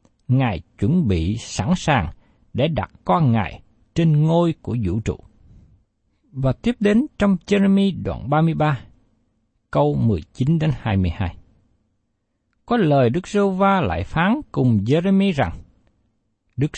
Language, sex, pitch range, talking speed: Vietnamese, male, 105-175 Hz, 120 wpm